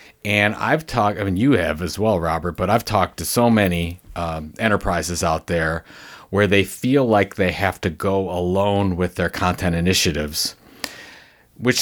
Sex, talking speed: male, 170 wpm